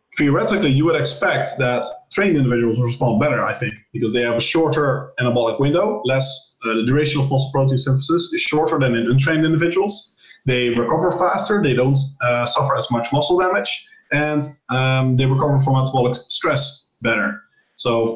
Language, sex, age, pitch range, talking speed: English, male, 20-39, 120-155 Hz, 170 wpm